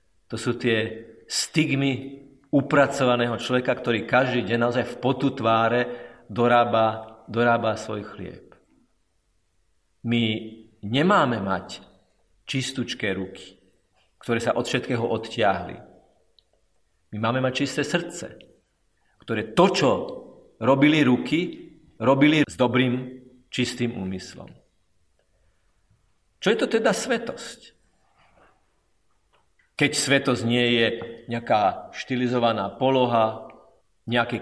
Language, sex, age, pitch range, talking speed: Slovak, male, 50-69, 110-140 Hz, 95 wpm